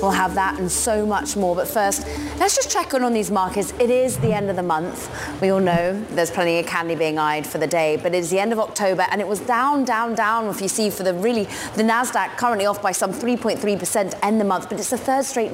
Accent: British